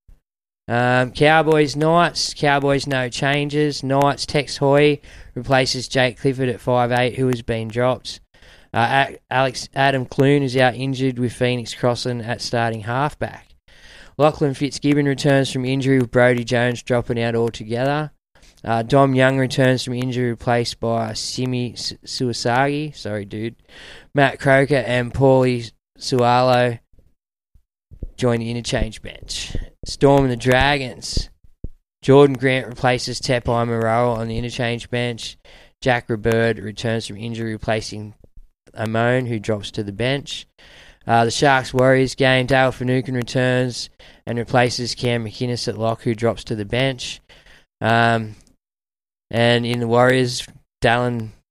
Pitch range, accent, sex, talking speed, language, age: 115-130 Hz, Australian, male, 130 wpm, English, 20-39